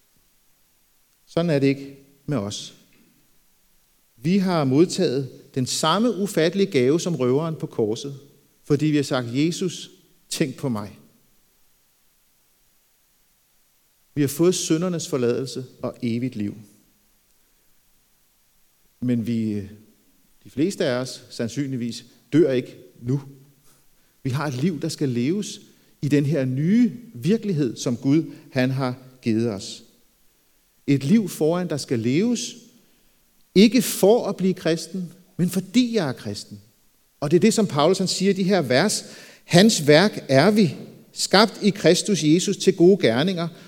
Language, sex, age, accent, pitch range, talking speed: Danish, male, 50-69, native, 130-185 Hz, 135 wpm